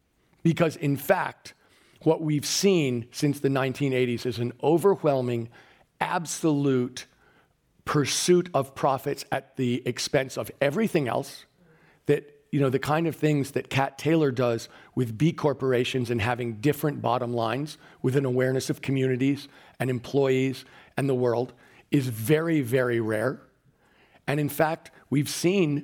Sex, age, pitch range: male, 50-69, 130-155 Hz